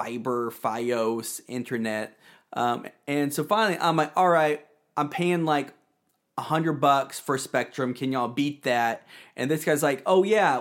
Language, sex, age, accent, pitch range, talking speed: English, male, 30-49, American, 130-180 Hz, 165 wpm